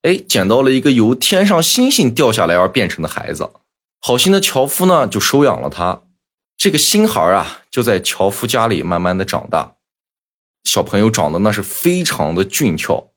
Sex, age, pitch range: male, 20-39, 95-150 Hz